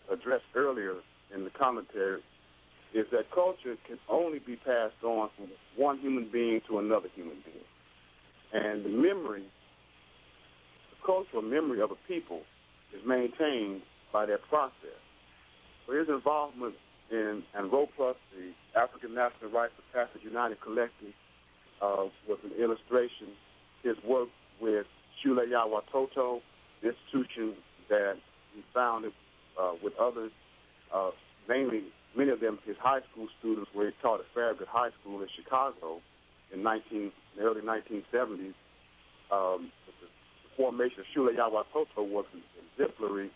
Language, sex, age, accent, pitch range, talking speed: English, male, 50-69, American, 85-120 Hz, 140 wpm